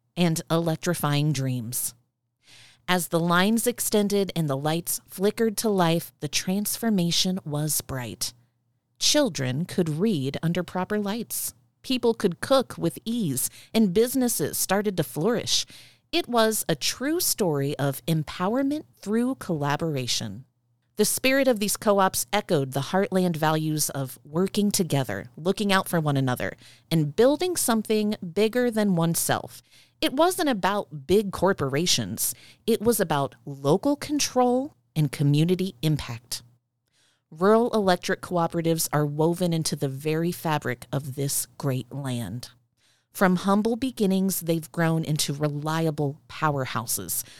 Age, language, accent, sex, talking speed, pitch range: 40-59, English, American, female, 125 wpm, 135-205 Hz